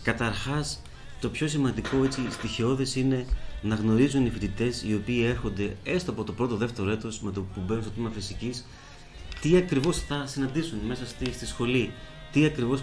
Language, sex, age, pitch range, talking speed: Greek, male, 30-49, 105-130 Hz, 170 wpm